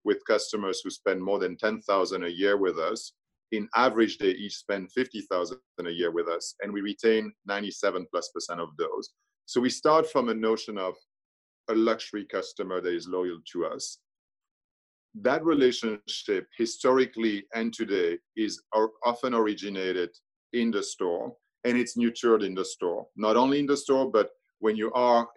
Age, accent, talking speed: 40-59, French, 165 wpm